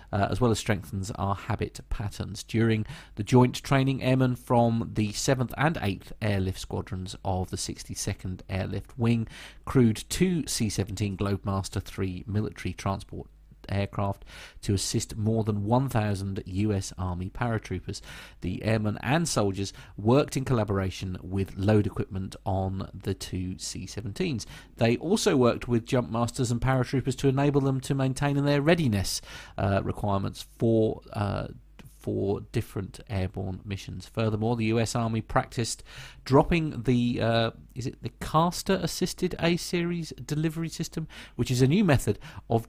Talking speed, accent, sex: 140 wpm, British, male